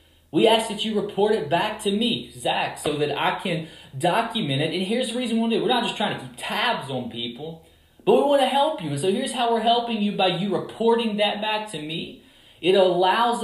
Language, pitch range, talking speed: English, 140-225 Hz, 250 wpm